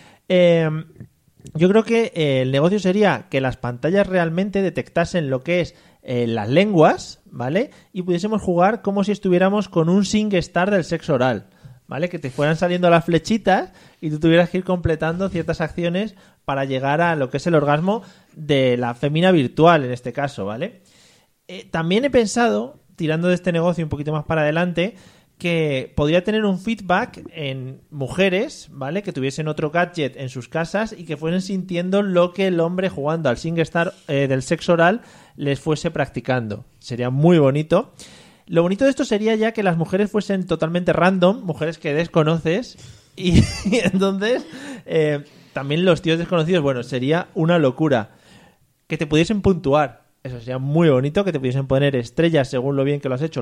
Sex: male